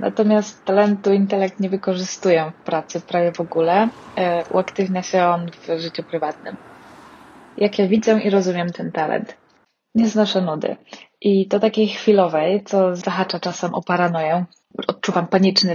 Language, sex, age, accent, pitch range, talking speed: Polish, female, 20-39, native, 170-200 Hz, 140 wpm